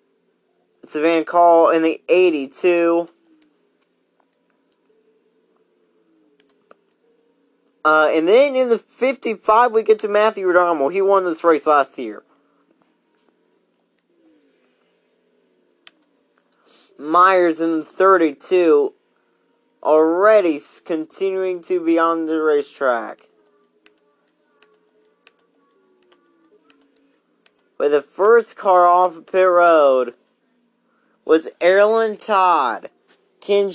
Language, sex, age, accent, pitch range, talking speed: English, male, 30-49, American, 160-220 Hz, 80 wpm